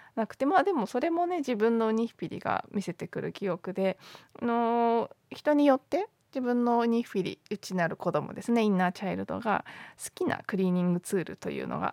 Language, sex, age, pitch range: Japanese, female, 20-39, 180-225 Hz